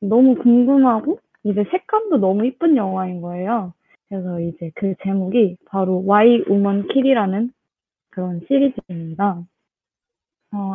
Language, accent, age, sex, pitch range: Korean, native, 20-39, female, 195-260 Hz